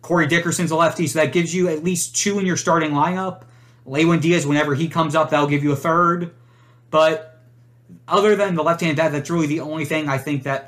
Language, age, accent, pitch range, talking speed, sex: English, 30-49, American, 140-170 Hz, 225 wpm, male